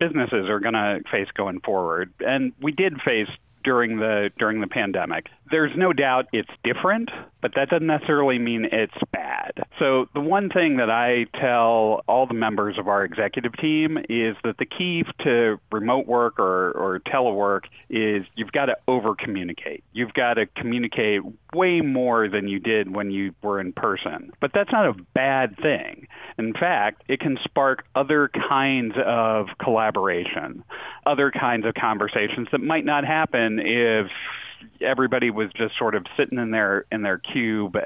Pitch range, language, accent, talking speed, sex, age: 105-135 Hz, English, American, 170 wpm, male, 40-59